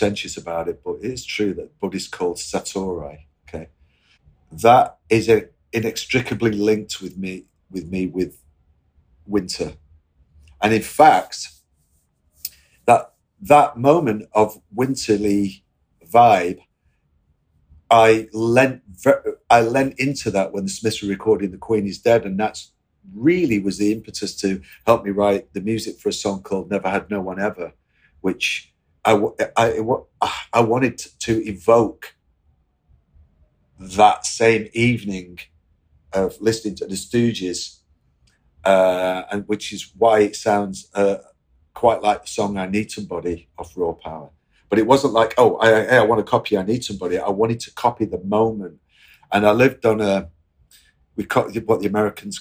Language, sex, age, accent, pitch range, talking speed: English, male, 40-59, British, 80-115 Hz, 150 wpm